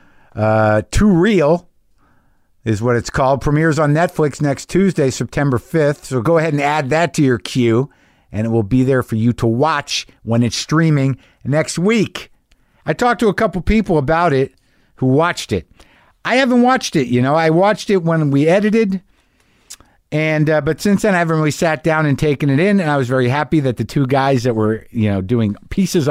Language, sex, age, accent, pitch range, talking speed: English, male, 50-69, American, 115-165 Hz, 205 wpm